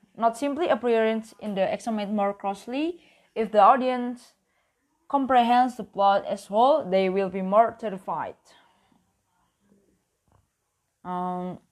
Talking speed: 120 wpm